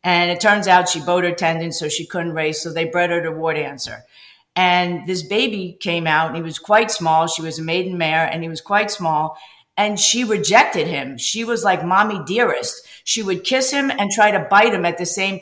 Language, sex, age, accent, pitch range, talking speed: English, female, 50-69, American, 165-210 Hz, 235 wpm